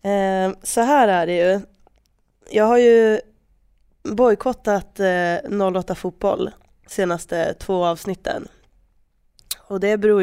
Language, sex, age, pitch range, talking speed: Swedish, female, 20-39, 175-205 Hz, 95 wpm